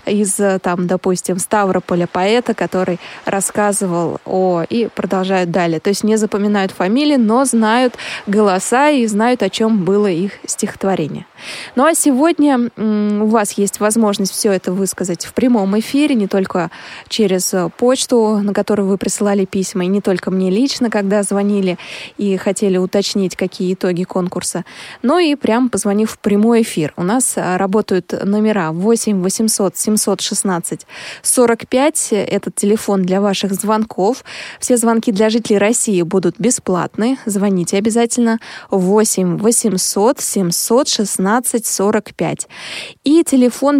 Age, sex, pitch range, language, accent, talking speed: 20-39, female, 190-235 Hz, Russian, native, 130 wpm